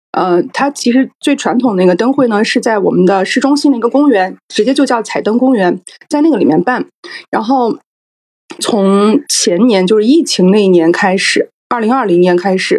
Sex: female